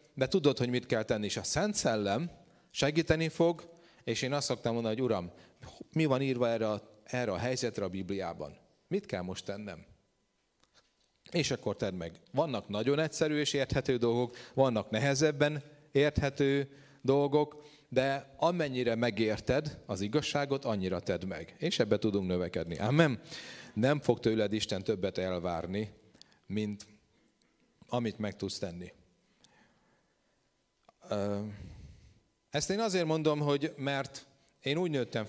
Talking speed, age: 135 wpm, 40-59